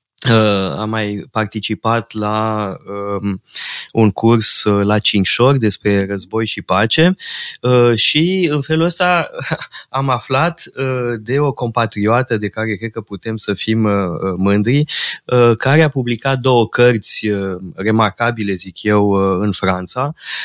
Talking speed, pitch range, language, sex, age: 140 wpm, 100-125 Hz, Romanian, male, 20-39